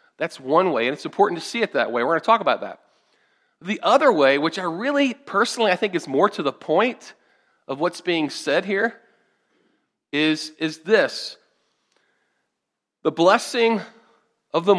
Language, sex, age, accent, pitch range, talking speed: English, male, 40-59, American, 150-235 Hz, 175 wpm